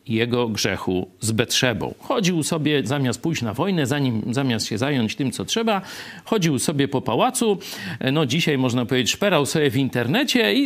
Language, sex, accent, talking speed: Polish, male, native, 170 wpm